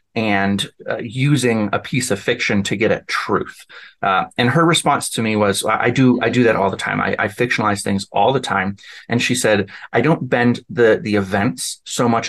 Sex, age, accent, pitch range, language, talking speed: male, 30-49, American, 100-125 Hz, English, 215 wpm